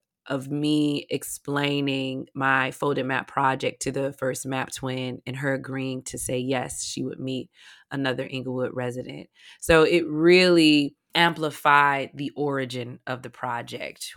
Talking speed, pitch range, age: 140 wpm, 130-150 Hz, 20-39